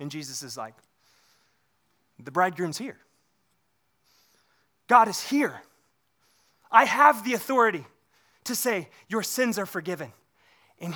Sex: male